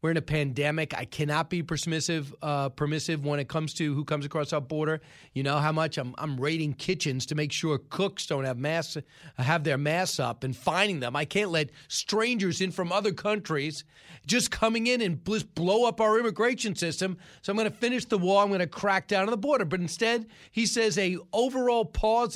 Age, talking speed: 40-59, 220 wpm